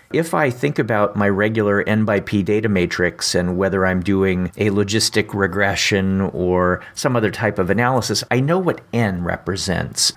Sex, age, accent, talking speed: male, 50-69, American, 170 wpm